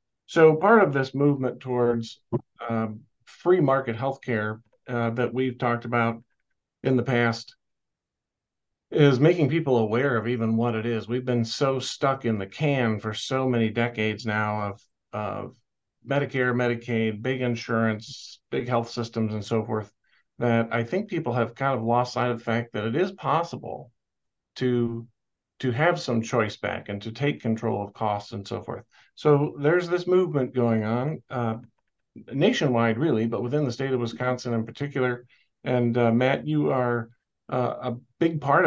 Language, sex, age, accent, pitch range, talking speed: English, male, 50-69, American, 115-135 Hz, 170 wpm